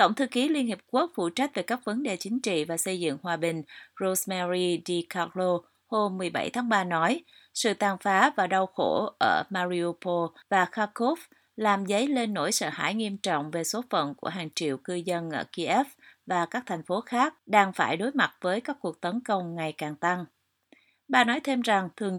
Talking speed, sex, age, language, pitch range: 210 wpm, female, 30-49, Vietnamese, 175-225 Hz